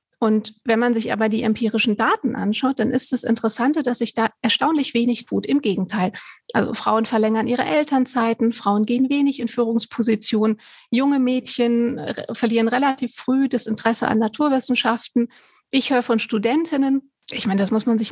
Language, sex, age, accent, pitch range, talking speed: German, female, 40-59, German, 220-260 Hz, 165 wpm